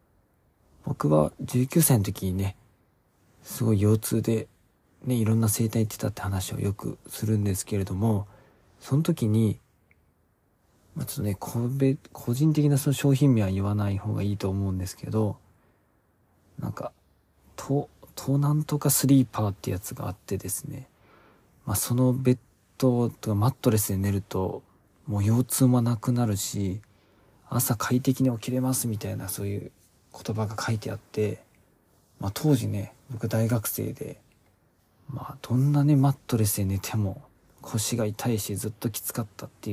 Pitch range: 100-130 Hz